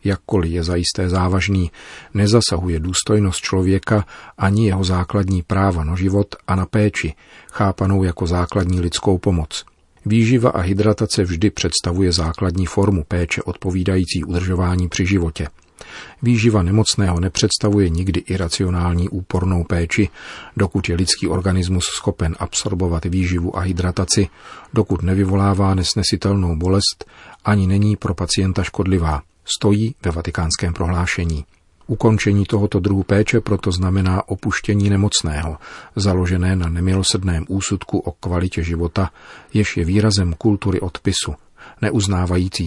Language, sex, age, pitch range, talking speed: Czech, male, 40-59, 90-100 Hz, 120 wpm